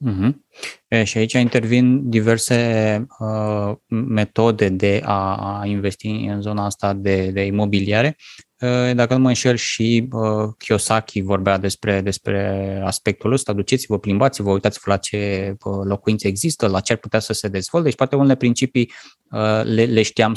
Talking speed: 155 wpm